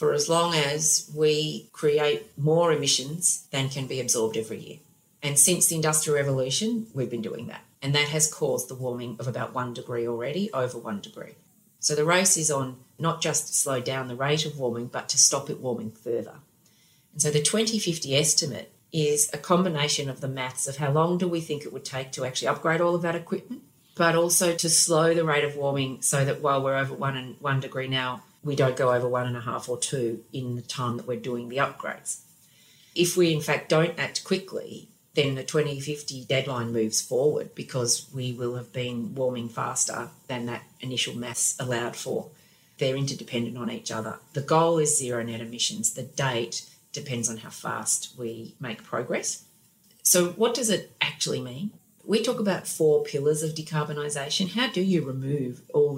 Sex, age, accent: female, 30-49, Australian